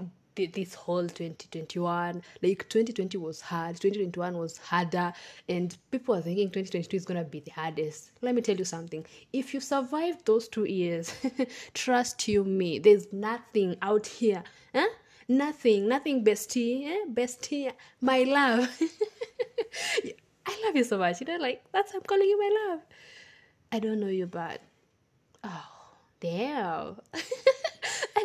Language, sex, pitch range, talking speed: English, female, 175-255 Hz, 145 wpm